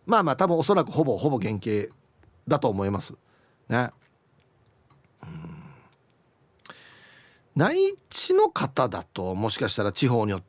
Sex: male